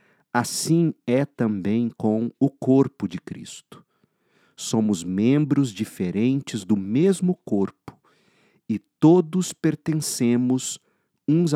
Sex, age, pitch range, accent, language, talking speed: male, 50-69, 105-160 Hz, Brazilian, Portuguese, 95 wpm